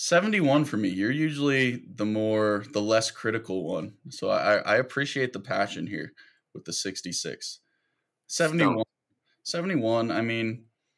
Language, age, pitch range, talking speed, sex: English, 20-39, 100-115 Hz, 135 wpm, male